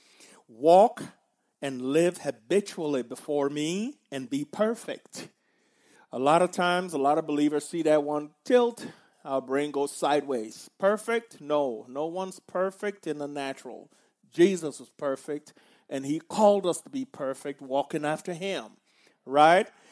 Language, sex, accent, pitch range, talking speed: English, male, American, 140-180 Hz, 140 wpm